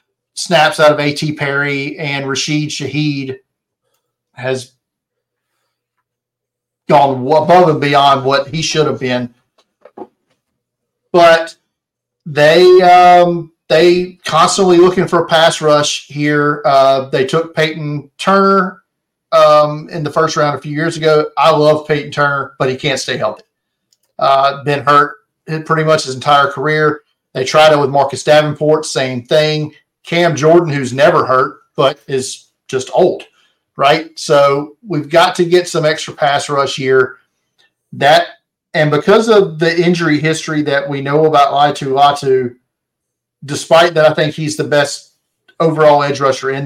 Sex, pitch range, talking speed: male, 140-160 Hz, 145 wpm